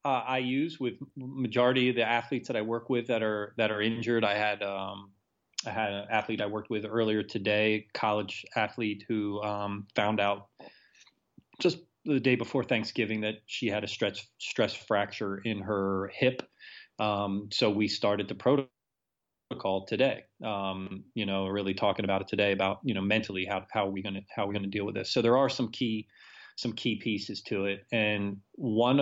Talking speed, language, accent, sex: 190 wpm, English, American, male